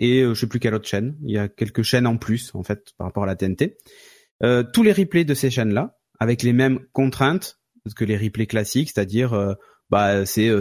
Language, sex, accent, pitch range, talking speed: French, male, French, 110-140 Hz, 230 wpm